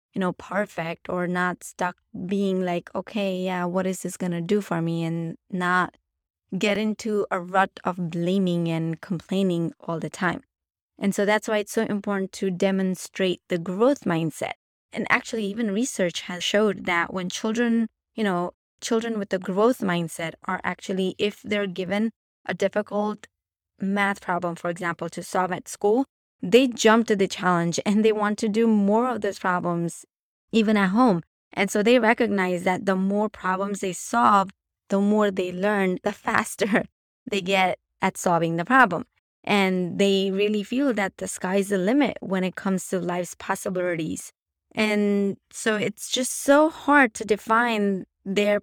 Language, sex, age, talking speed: English, female, 20-39, 170 wpm